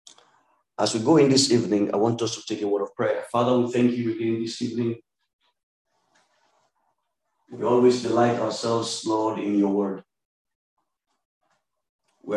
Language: English